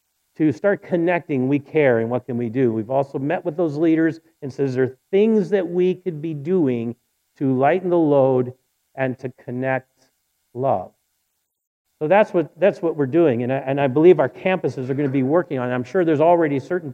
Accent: American